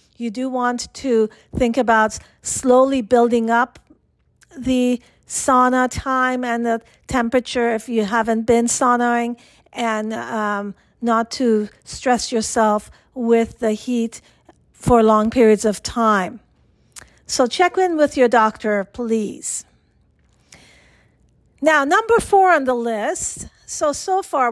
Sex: female